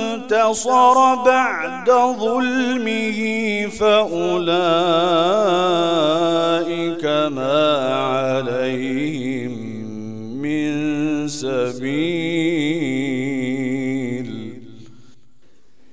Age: 40-59